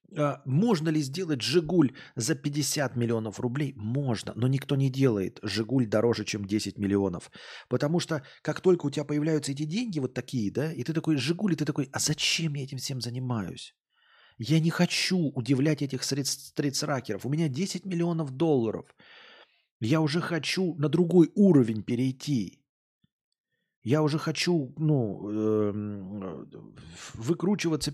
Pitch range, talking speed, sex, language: 125-170 Hz, 145 wpm, male, Russian